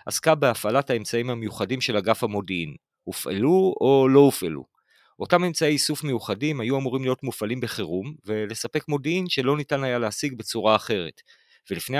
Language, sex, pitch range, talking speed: Hebrew, male, 110-150 Hz, 145 wpm